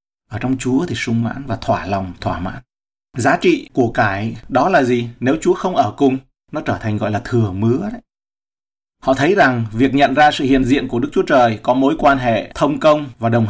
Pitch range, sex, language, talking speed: 110-135 Hz, male, Vietnamese, 230 wpm